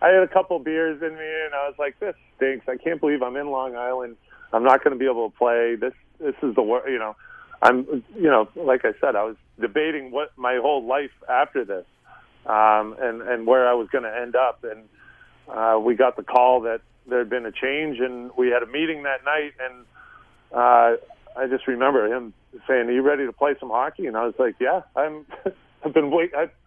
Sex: male